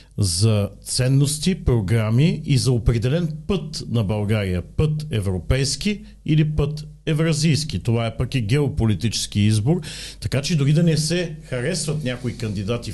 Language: Bulgarian